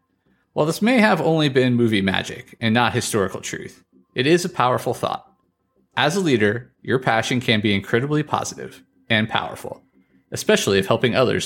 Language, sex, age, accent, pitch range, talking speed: English, male, 30-49, American, 100-150 Hz, 170 wpm